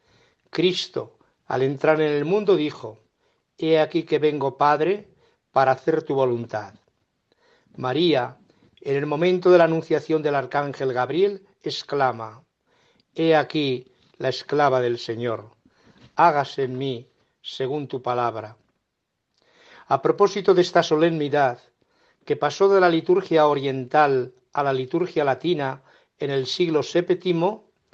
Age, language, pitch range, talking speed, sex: 60-79, Spanish, 135-175 Hz, 125 wpm, male